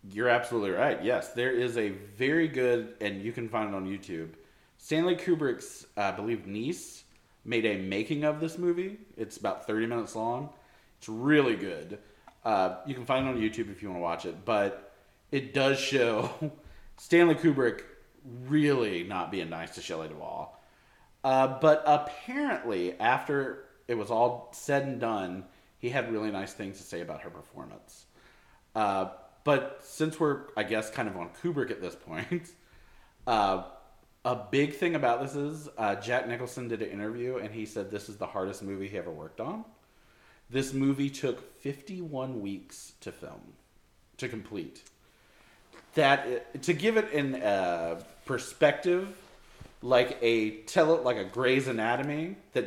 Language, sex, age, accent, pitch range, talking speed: English, male, 30-49, American, 110-150 Hz, 165 wpm